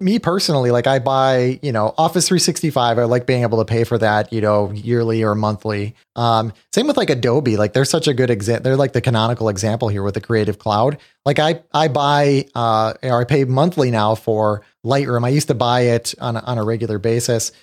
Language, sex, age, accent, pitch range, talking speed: English, male, 30-49, American, 115-140 Hz, 230 wpm